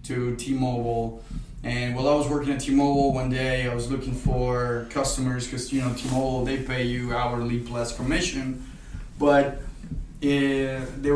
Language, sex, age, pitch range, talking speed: English, male, 20-39, 125-150 Hz, 150 wpm